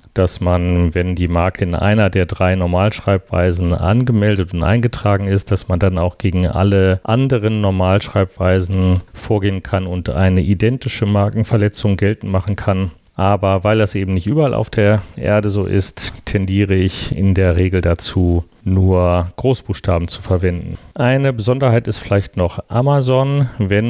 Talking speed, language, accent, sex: 150 wpm, German, German, male